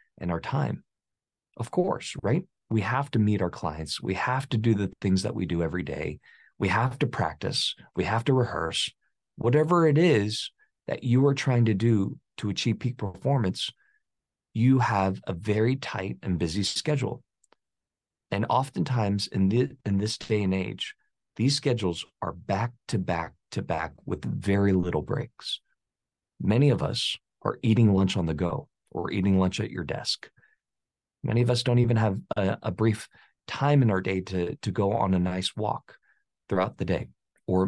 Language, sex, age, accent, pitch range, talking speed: English, male, 40-59, American, 95-125 Hz, 180 wpm